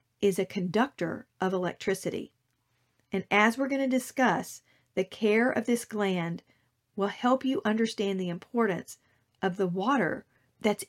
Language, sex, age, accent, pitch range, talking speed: English, female, 40-59, American, 180-230 Hz, 145 wpm